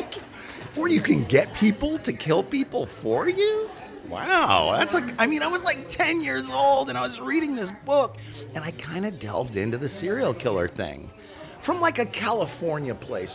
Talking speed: 190 wpm